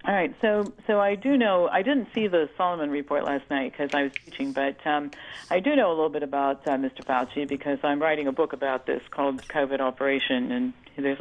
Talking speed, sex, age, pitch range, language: 230 wpm, female, 50-69, 135-170 Hz, English